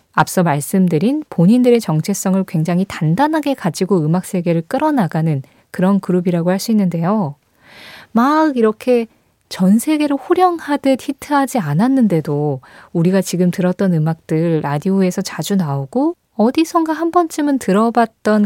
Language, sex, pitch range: Korean, female, 160-250 Hz